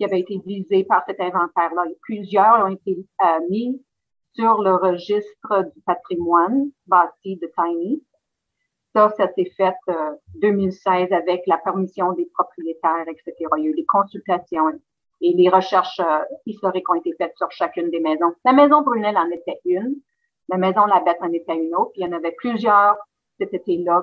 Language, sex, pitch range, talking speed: French, female, 175-235 Hz, 180 wpm